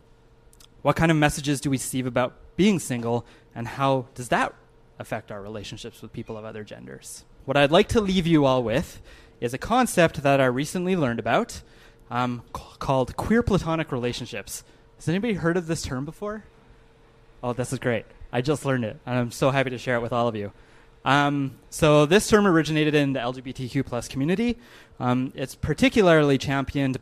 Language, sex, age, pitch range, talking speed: English, male, 20-39, 120-150 Hz, 185 wpm